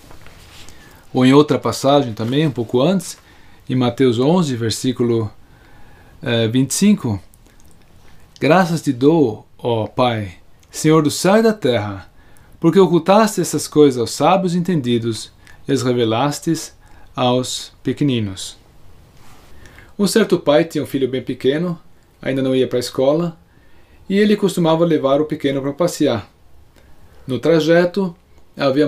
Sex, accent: male, Brazilian